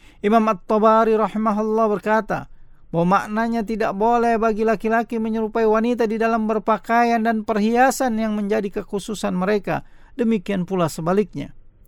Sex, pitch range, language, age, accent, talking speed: male, 185-230 Hz, Indonesian, 50-69, native, 120 wpm